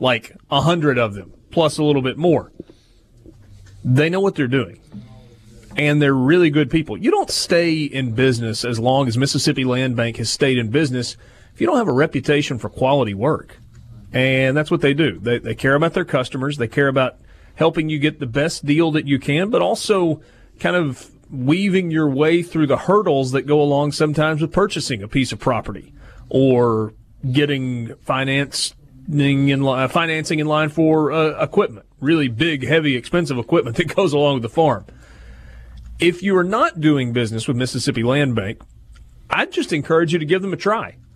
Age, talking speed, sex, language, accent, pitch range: 40-59, 185 wpm, male, English, American, 120-155 Hz